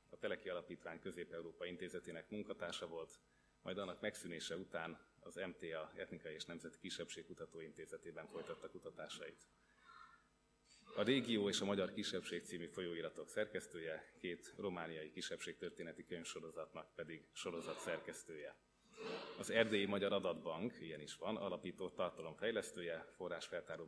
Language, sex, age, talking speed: Hungarian, male, 30-49, 120 wpm